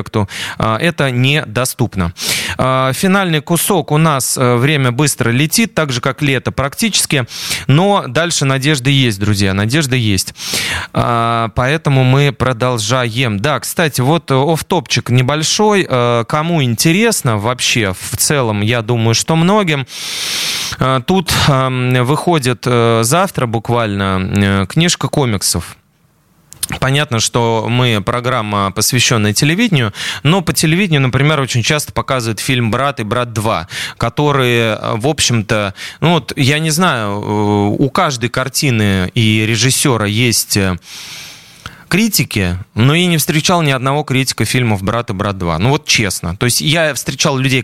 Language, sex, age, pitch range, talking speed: Russian, male, 20-39, 115-160 Hz, 120 wpm